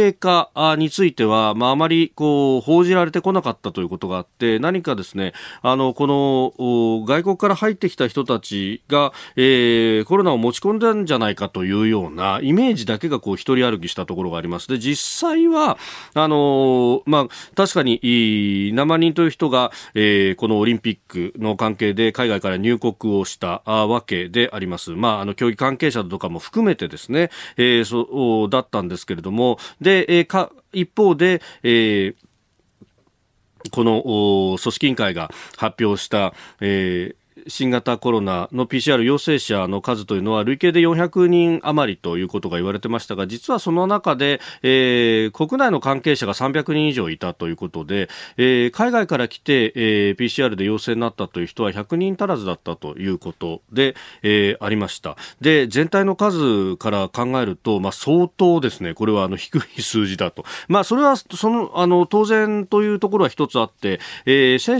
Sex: male